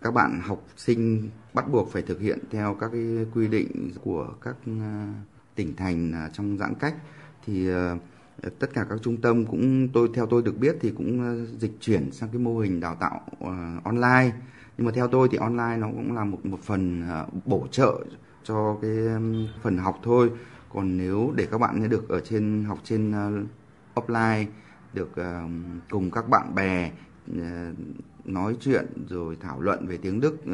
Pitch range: 105-130 Hz